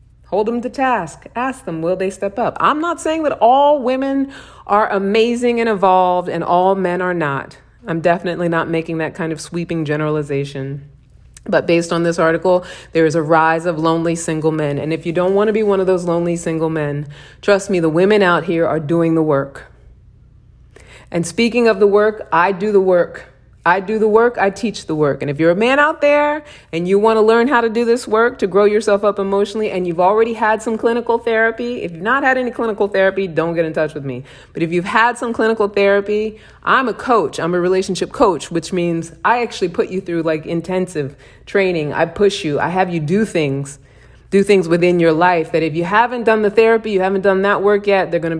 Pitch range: 165-215 Hz